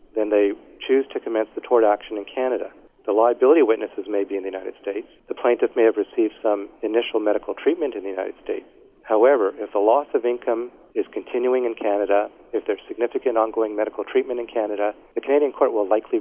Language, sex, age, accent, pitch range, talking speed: English, male, 40-59, American, 105-150 Hz, 205 wpm